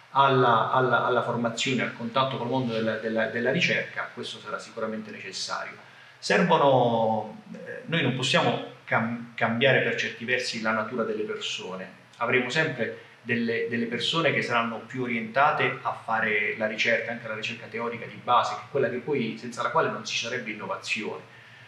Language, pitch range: Italian, 110-135 Hz